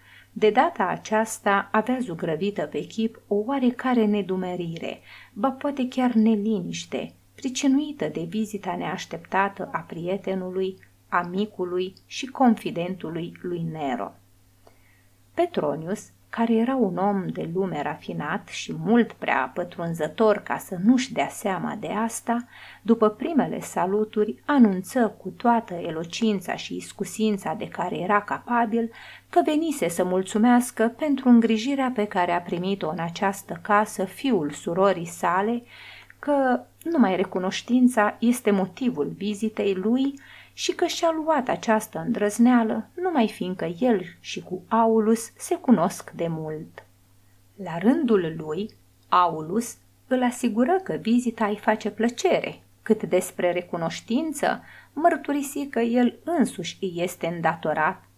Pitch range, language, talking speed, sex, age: 175-235 Hz, Romanian, 120 wpm, female, 30-49